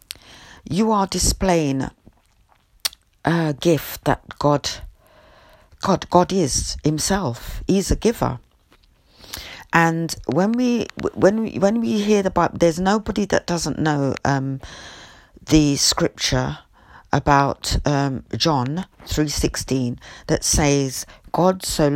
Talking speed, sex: 110 wpm, female